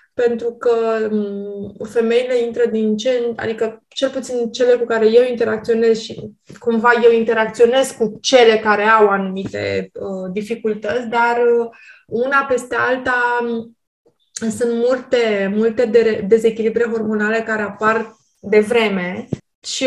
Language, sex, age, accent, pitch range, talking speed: Romanian, female, 20-39, native, 215-250 Hz, 120 wpm